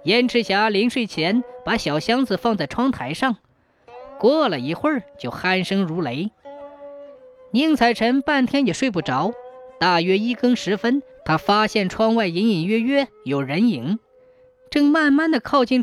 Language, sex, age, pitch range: Chinese, female, 20-39, 180-260 Hz